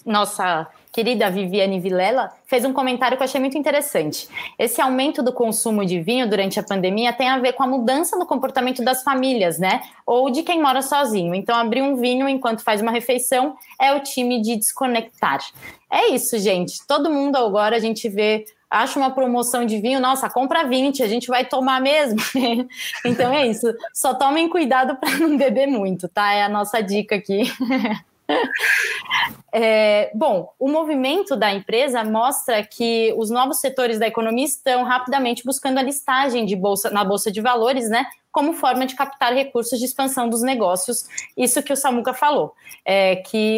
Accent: Brazilian